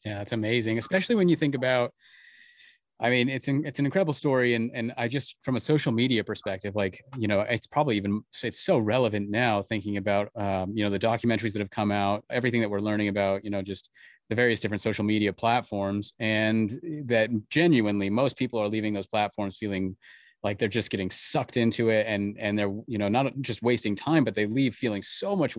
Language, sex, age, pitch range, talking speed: English, male, 30-49, 100-120 Hz, 215 wpm